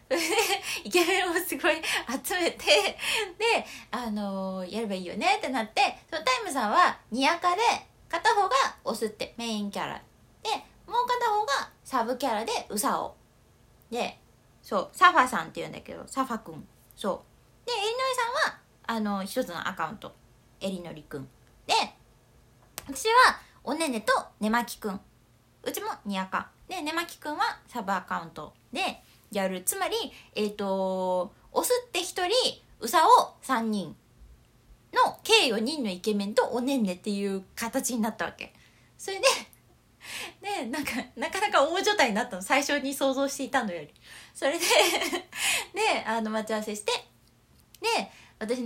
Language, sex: Japanese, female